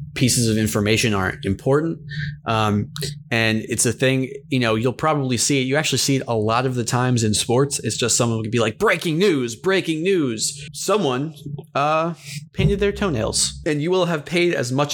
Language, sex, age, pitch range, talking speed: English, male, 20-39, 110-145 Hz, 195 wpm